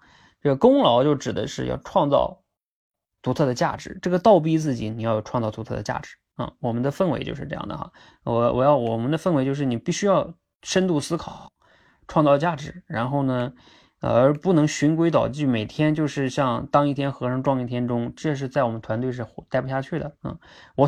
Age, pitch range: 20-39, 125-155 Hz